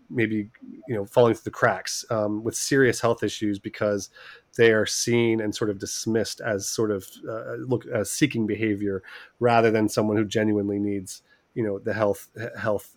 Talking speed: 180 wpm